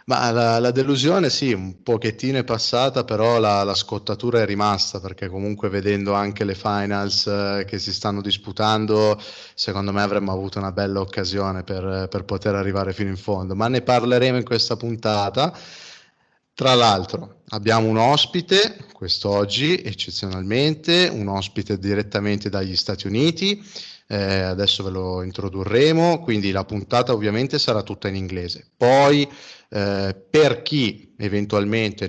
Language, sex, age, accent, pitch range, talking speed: Italian, male, 20-39, native, 100-115 Hz, 145 wpm